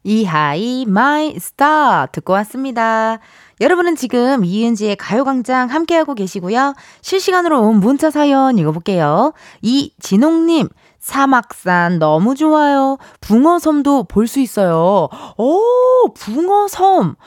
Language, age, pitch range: Korean, 20-39, 190-300 Hz